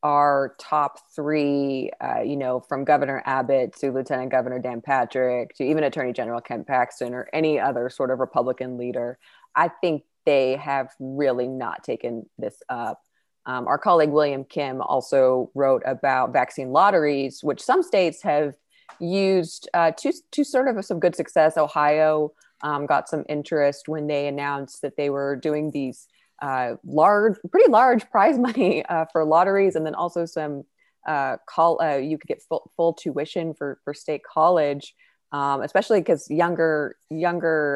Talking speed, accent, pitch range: 165 wpm, American, 130-160 Hz